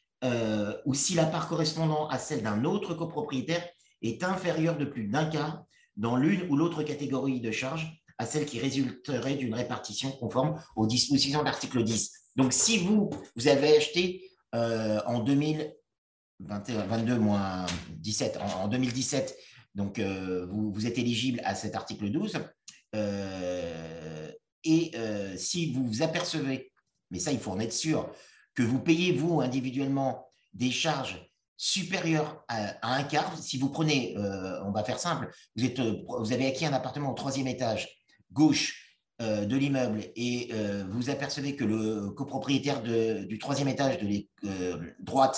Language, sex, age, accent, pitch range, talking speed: French, male, 50-69, French, 110-150 Hz, 155 wpm